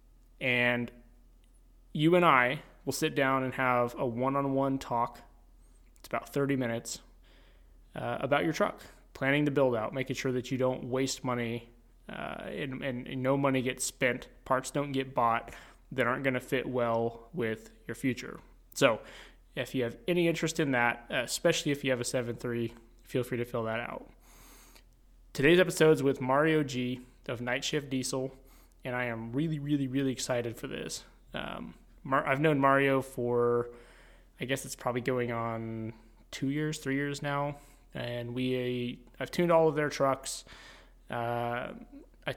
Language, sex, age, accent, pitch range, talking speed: English, male, 20-39, American, 120-140 Hz, 165 wpm